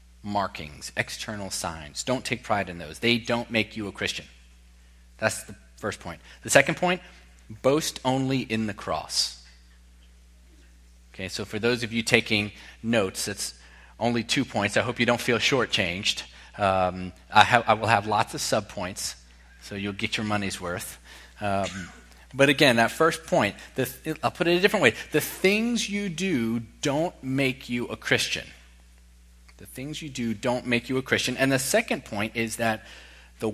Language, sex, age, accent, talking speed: English, male, 30-49, American, 175 wpm